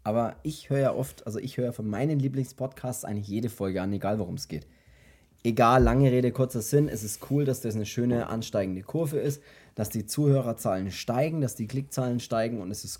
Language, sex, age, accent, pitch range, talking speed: German, male, 20-39, German, 105-135 Hz, 210 wpm